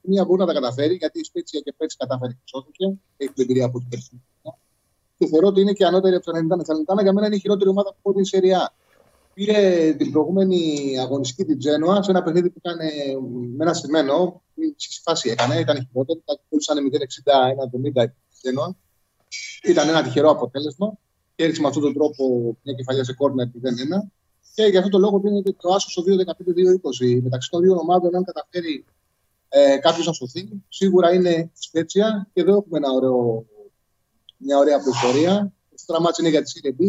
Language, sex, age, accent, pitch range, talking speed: Greek, male, 30-49, native, 135-185 Hz, 180 wpm